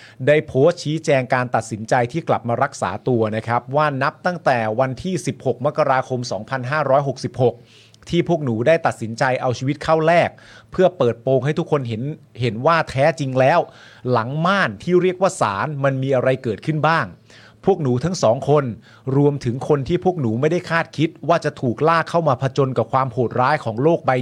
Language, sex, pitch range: Thai, male, 120-160 Hz